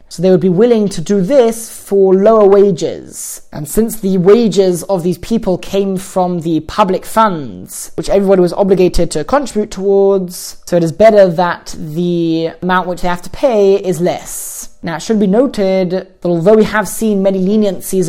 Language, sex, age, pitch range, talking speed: English, male, 20-39, 185-220 Hz, 185 wpm